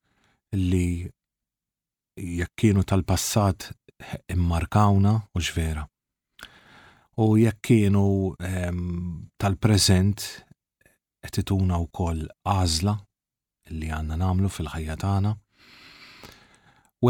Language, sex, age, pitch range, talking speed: English, male, 40-59, 90-105 Hz, 70 wpm